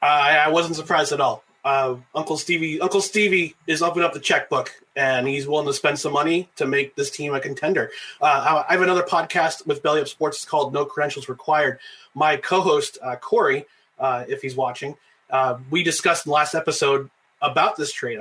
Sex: male